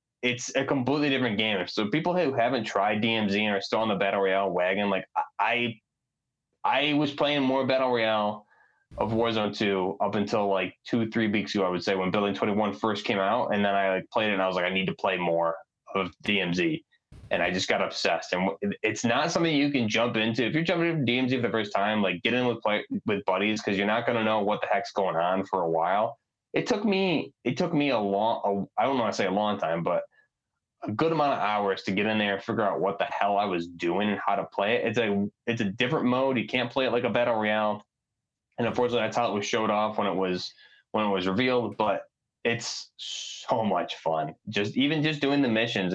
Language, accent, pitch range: English, American, 100-125 Hz